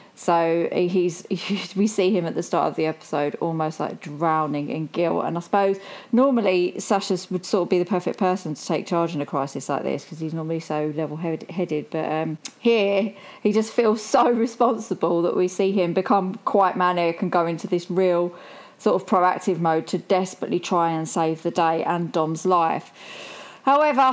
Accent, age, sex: British, 30-49, female